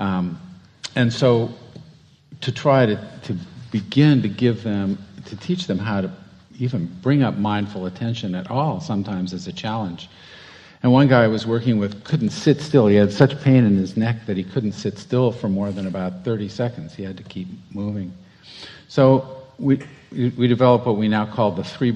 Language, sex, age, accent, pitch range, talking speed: English, male, 50-69, American, 100-135 Hz, 190 wpm